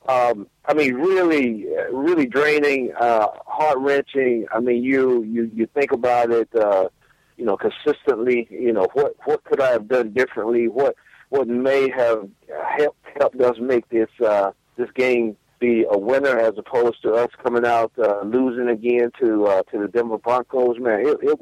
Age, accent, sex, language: 50-69, American, male, English